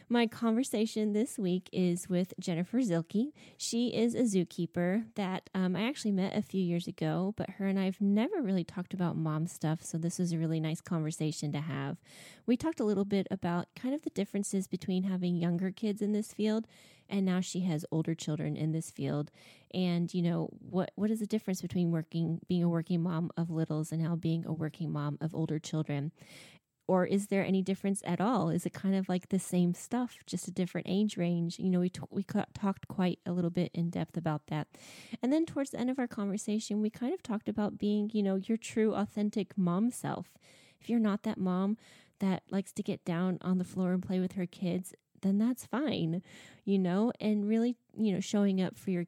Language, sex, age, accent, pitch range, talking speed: English, female, 20-39, American, 170-210 Hz, 220 wpm